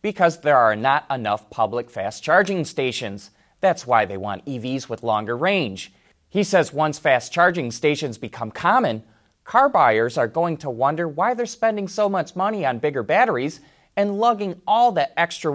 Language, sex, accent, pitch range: English, male, American, 115-185 Hz